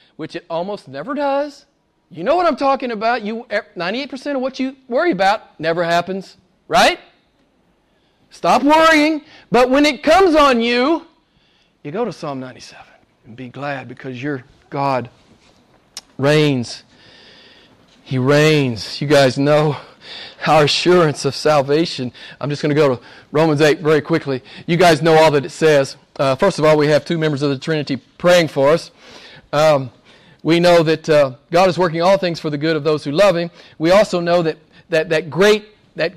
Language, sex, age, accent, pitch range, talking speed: English, male, 40-59, American, 150-250 Hz, 175 wpm